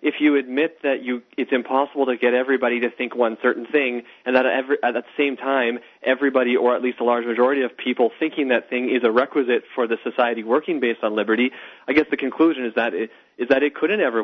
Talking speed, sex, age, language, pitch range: 235 wpm, male, 30-49, English, 120-155 Hz